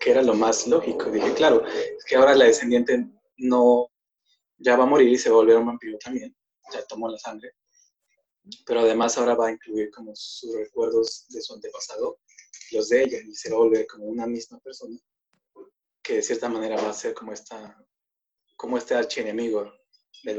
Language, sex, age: Spanish, male, 20-39